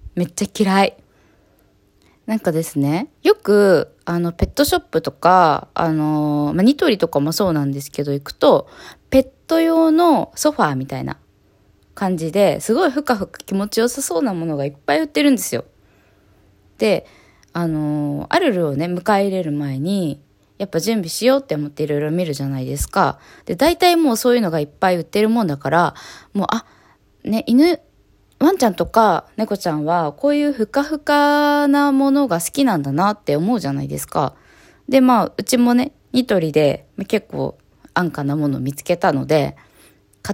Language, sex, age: Japanese, female, 20-39